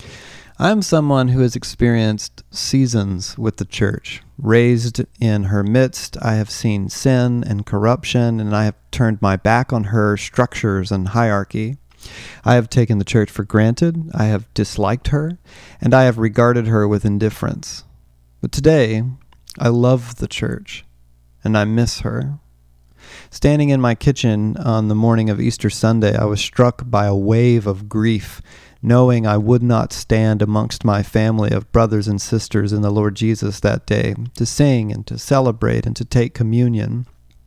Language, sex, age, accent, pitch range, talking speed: English, male, 40-59, American, 105-120 Hz, 165 wpm